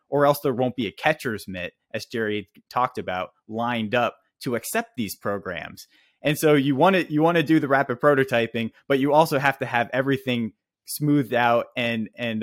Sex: male